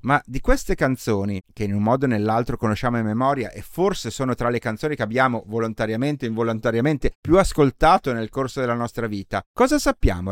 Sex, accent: male, native